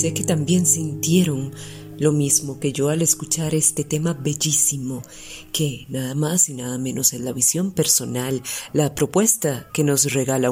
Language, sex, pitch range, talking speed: Spanish, female, 135-170 Hz, 160 wpm